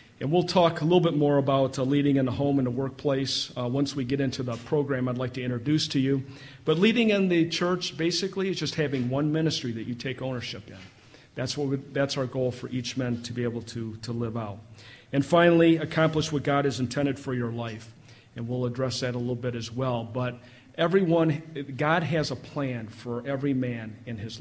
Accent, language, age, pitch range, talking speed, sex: American, English, 40-59, 125-150 Hz, 220 wpm, male